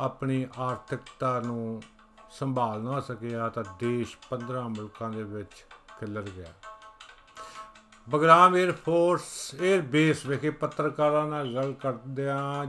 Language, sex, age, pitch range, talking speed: Punjabi, male, 50-69, 120-145 Hz, 115 wpm